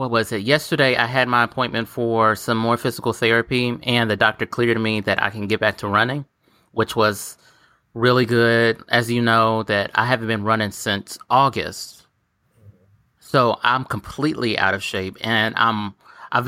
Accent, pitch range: American, 105-120 Hz